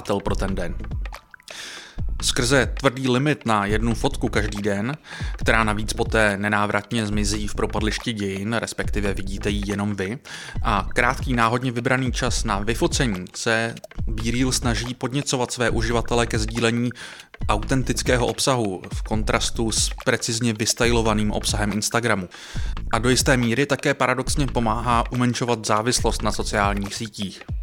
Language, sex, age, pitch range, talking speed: Czech, male, 20-39, 105-125 Hz, 130 wpm